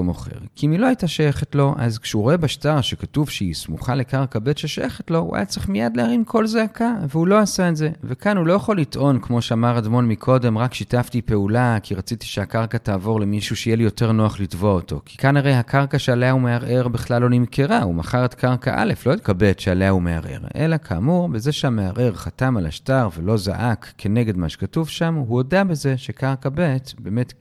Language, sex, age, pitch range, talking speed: Hebrew, male, 40-59, 105-160 Hz, 195 wpm